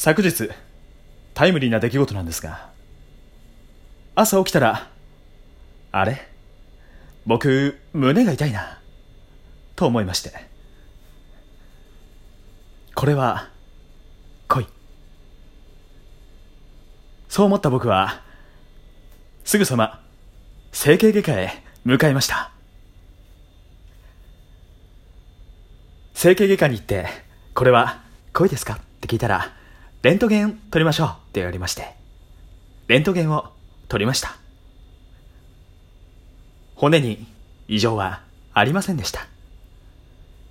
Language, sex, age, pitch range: Japanese, male, 30-49, 85-135 Hz